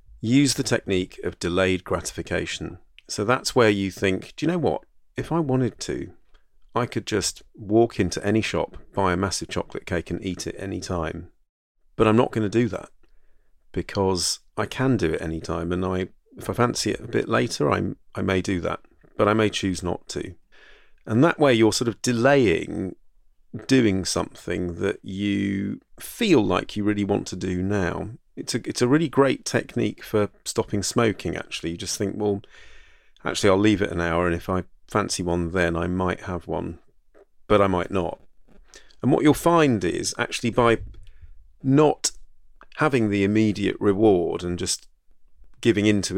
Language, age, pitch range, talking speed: English, 40-59, 90-110 Hz, 180 wpm